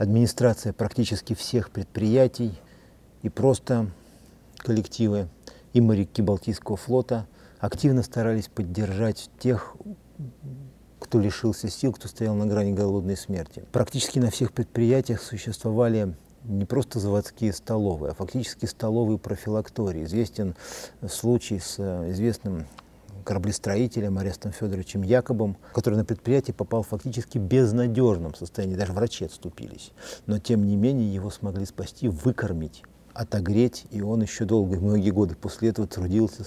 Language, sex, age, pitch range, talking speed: Russian, male, 50-69, 100-120 Hz, 120 wpm